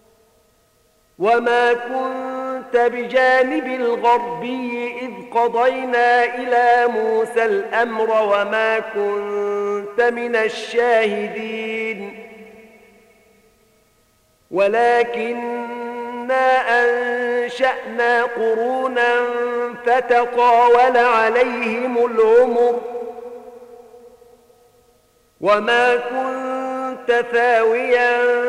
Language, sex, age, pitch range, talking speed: Arabic, male, 50-69, 220-245 Hz, 45 wpm